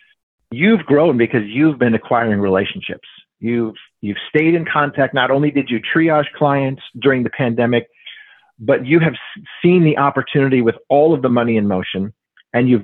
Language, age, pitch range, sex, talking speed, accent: English, 40-59, 115-155 Hz, male, 175 wpm, American